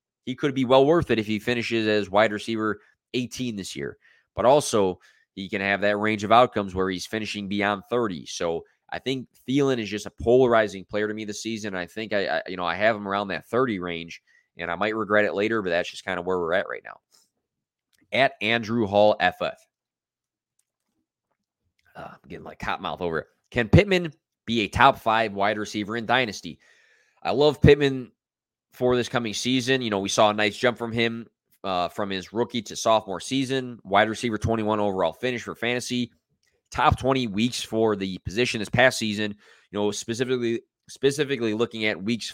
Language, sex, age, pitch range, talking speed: English, male, 20-39, 105-120 Hz, 195 wpm